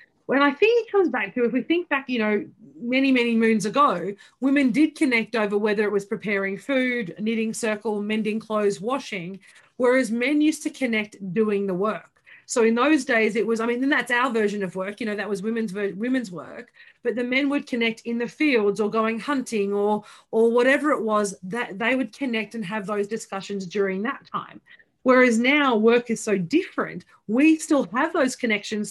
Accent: Australian